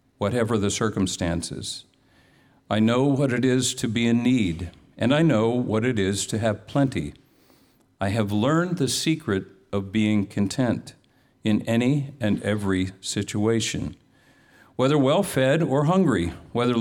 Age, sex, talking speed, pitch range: 50-69, male, 140 wpm, 100-130 Hz